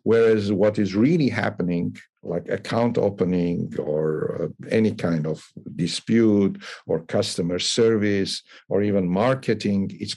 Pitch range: 95-120 Hz